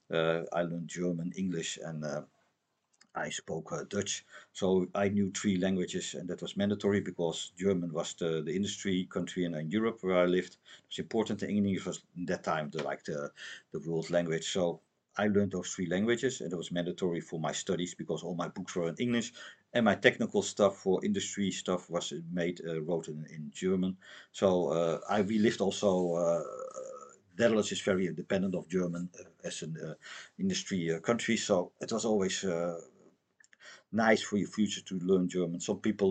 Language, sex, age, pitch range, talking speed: English, male, 50-69, 85-100 Hz, 190 wpm